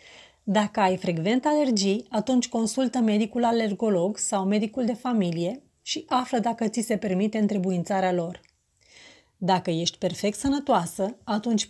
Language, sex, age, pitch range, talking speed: Romanian, female, 30-49, 205-250 Hz, 130 wpm